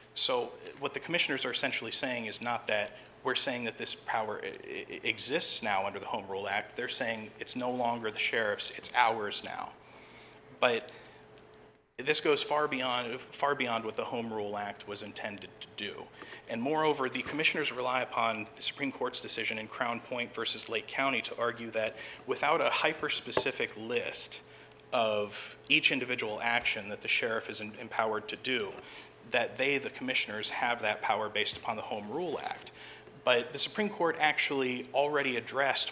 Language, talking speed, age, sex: English, 170 wpm, 30-49, male